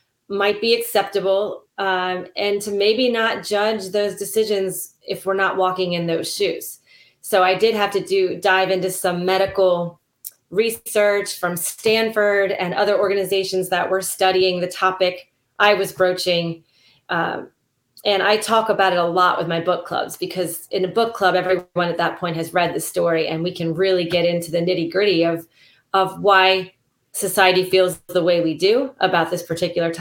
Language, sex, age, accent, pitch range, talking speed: English, female, 30-49, American, 180-210 Hz, 175 wpm